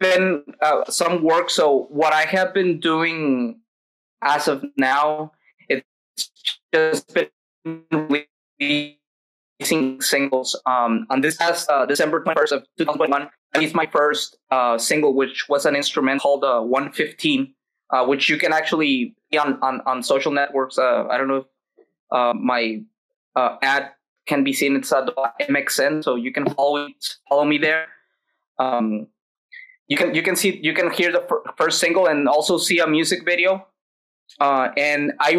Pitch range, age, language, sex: 135-175 Hz, 20-39, English, male